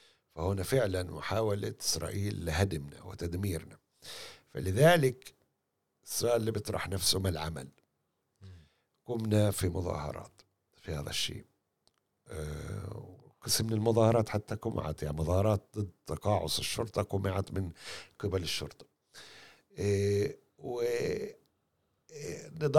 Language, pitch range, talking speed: Arabic, 90-115 Hz, 90 wpm